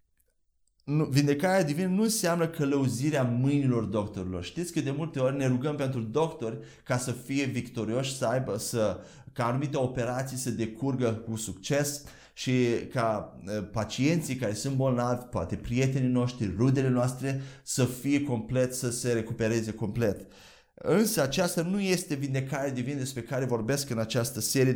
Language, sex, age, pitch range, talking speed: Romanian, male, 30-49, 115-145 Hz, 145 wpm